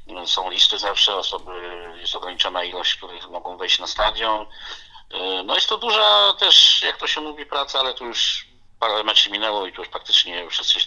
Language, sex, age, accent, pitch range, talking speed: Polish, male, 50-69, native, 90-150 Hz, 190 wpm